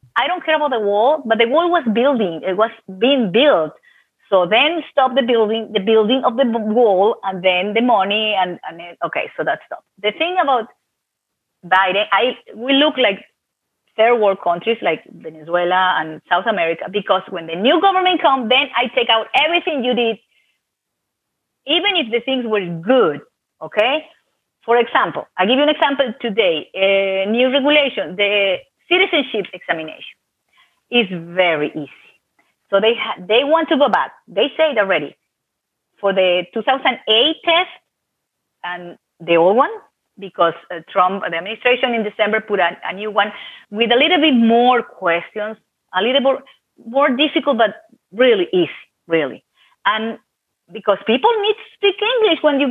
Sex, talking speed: female, 165 wpm